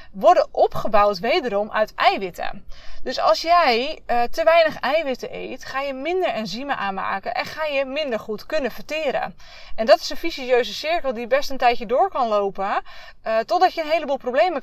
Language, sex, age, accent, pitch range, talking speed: Dutch, female, 20-39, Dutch, 215-285 Hz, 180 wpm